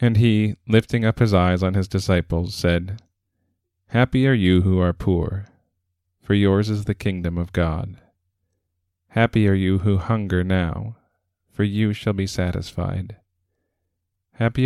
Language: English